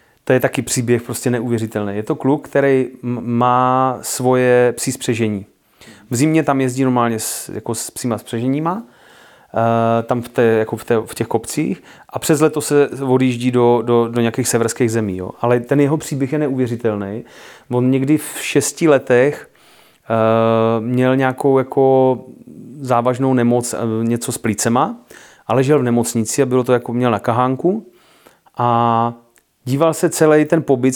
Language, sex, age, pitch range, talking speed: Czech, male, 30-49, 115-135 Hz, 160 wpm